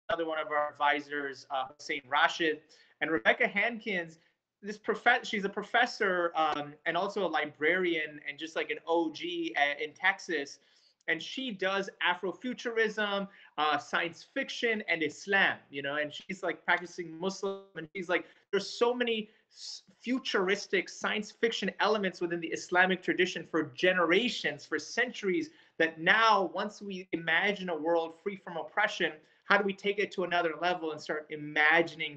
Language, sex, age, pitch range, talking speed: English, male, 30-49, 150-200 Hz, 155 wpm